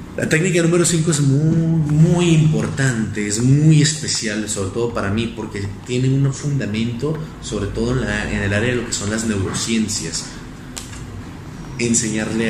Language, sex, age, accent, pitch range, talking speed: Spanish, male, 30-49, Mexican, 100-135 Hz, 160 wpm